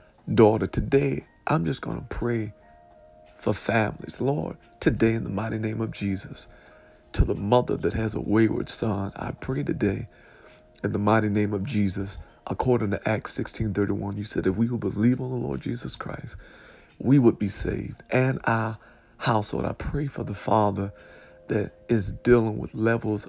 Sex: male